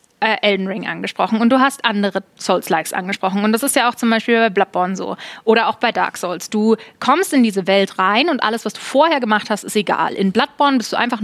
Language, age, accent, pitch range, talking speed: German, 20-39, German, 200-240 Hz, 240 wpm